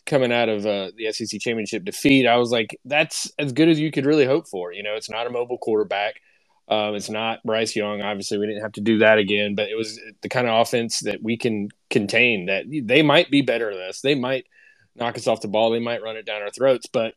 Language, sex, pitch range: English, male, 105-125 Hz